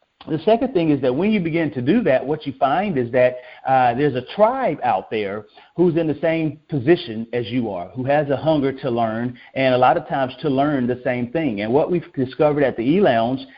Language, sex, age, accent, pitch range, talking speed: English, male, 40-59, American, 125-165 Hz, 235 wpm